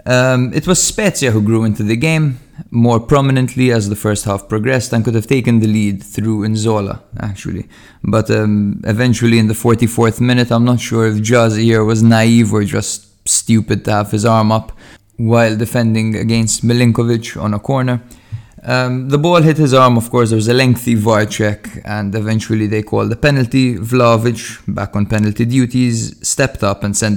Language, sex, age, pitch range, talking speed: English, male, 20-39, 105-120 Hz, 185 wpm